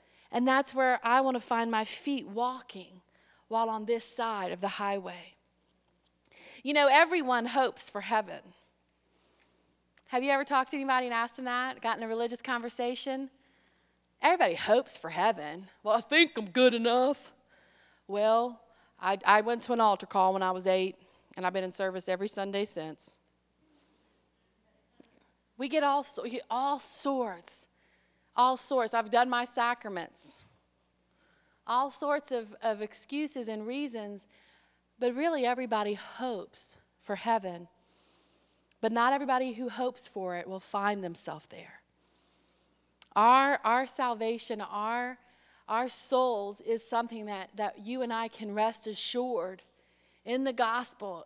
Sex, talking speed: female, 140 wpm